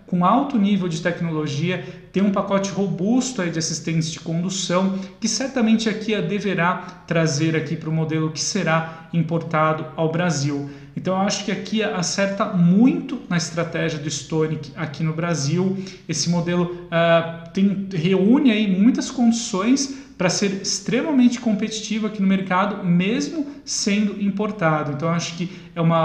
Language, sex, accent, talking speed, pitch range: Portuguese, male, Brazilian, 155 wpm, 165-200 Hz